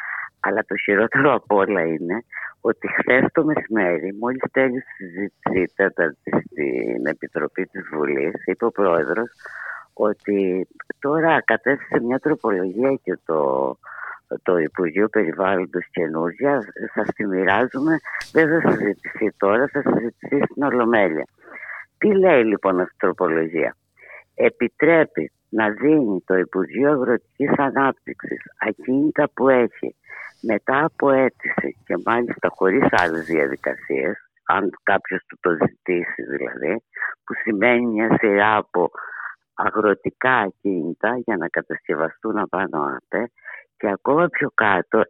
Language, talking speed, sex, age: Greek, 115 wpm, female, 50-69